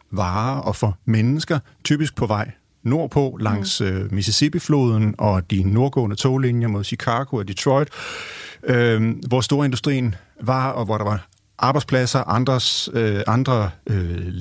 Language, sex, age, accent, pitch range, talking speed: Danish, male, 40-59, native, 105-140 Hz, 135 wpm